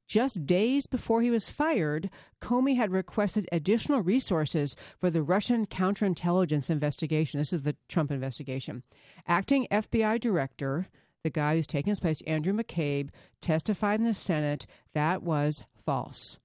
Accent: American